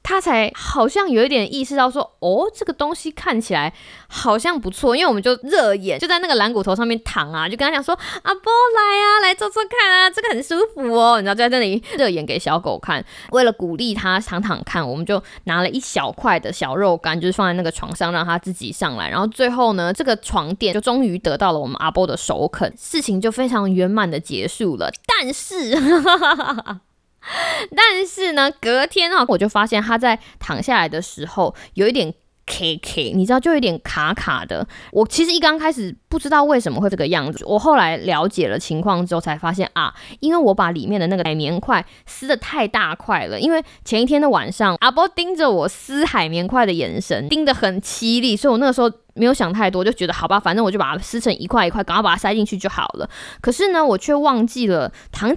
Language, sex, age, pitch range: Chinese, female, 20-39, 185-280 Hz